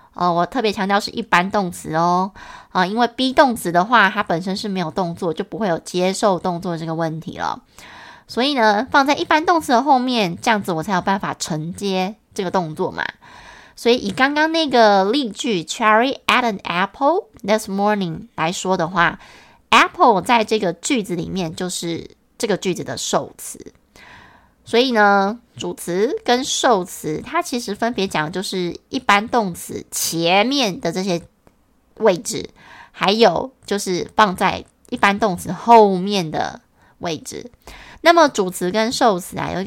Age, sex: 20-39, female